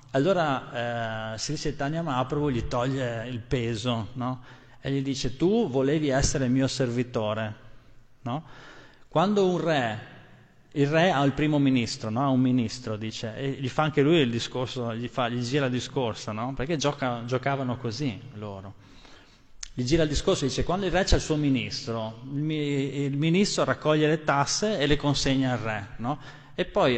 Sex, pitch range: male, 125-150 Hz